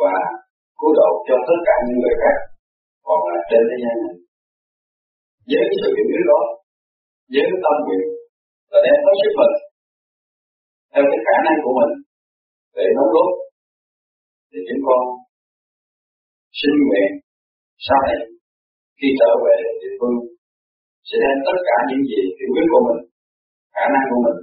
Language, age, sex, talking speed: Vietnamese, 50-69, male, 155 wpm